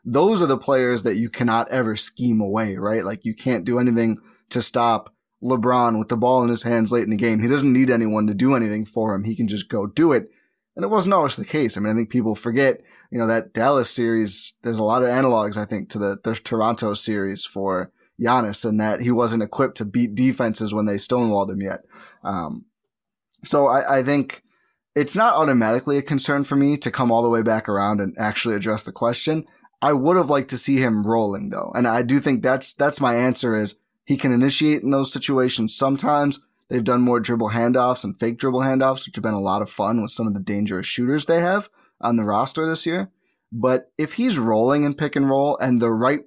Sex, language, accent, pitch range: male, English, American, 110-135 Hz